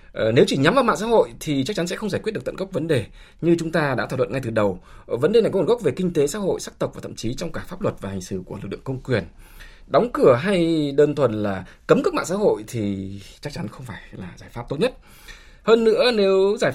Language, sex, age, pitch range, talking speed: Vietnamese, male, 20-39, 110-180 Hz, 290 wpm